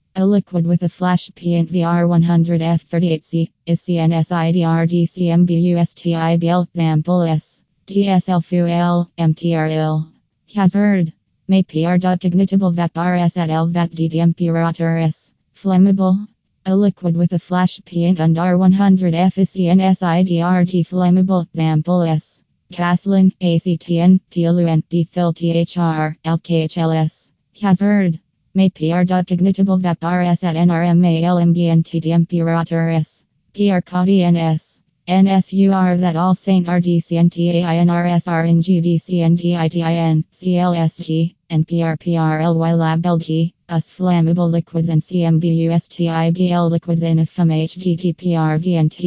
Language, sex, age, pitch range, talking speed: English, female, 20-39, 165-180 Hz, 85 wpm